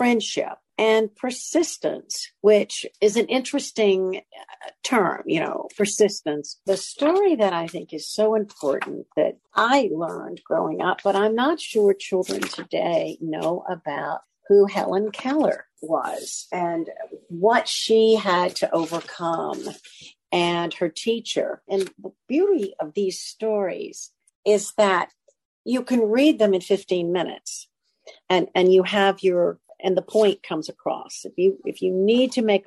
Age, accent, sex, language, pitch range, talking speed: 50-69, American, female, English, 175-230 Hz, 140 wpm